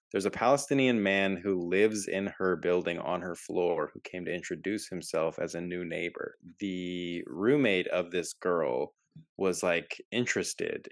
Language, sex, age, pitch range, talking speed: English, male, 20-39, 90-105 Hz, 160 wpm